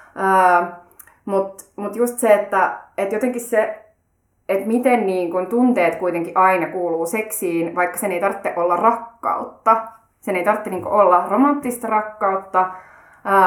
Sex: female